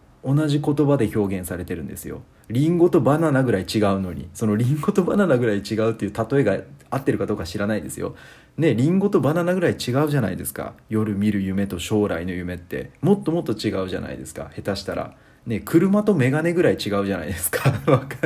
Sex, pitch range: male, 95-145 Hz